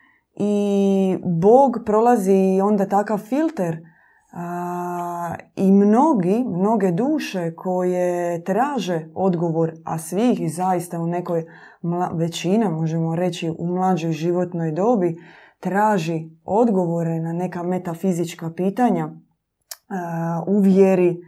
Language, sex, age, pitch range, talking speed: Croatian, female, 20-39, 170-205 Hz, 95 wpm